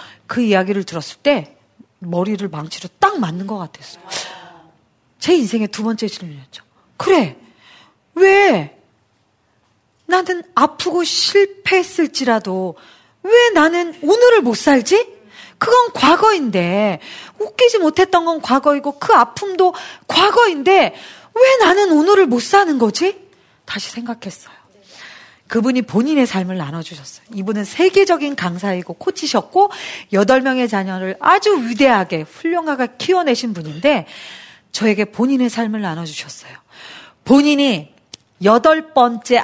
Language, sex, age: Korean, female, 40-59